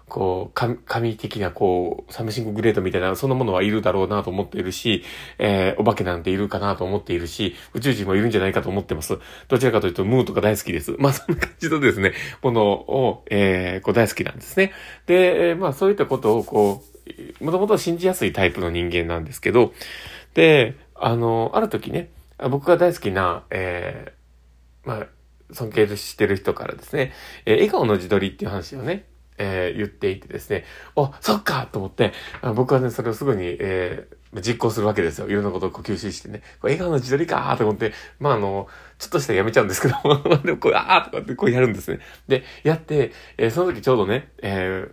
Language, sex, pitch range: Japanese, male, 95-130 Hz